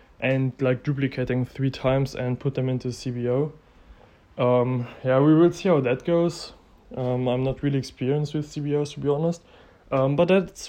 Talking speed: 175 wpm